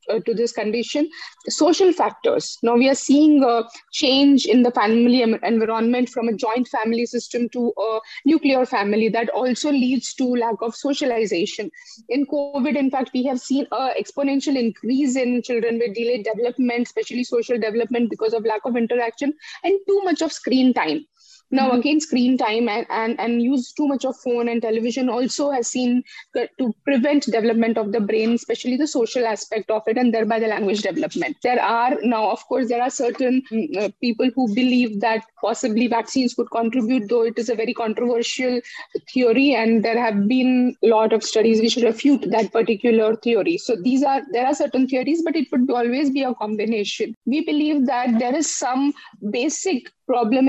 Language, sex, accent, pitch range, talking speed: English, female, Indian, 230-270 Hz, 180 wpm